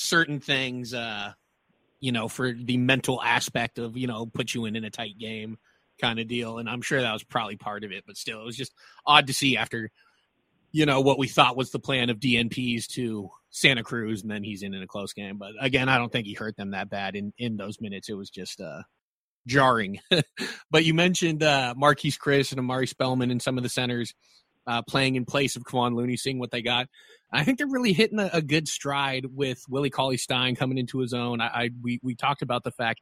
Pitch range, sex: 115-135 Hz, male